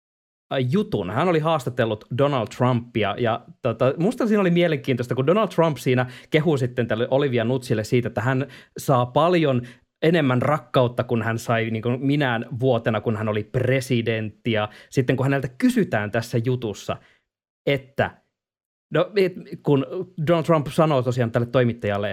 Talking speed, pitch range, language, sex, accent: 150 wpm, 120-165 Hz, Finnish, male, native